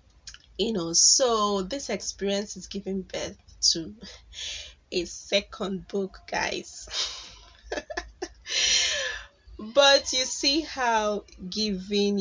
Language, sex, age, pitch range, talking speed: English, female, 20-39, 165-205 Hz, 90 wpm